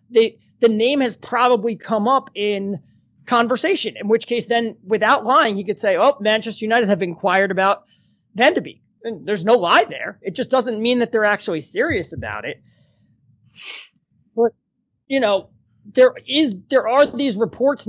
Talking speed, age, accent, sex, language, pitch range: 165 wpm, 30-49, American, male, English, 195-235 Hz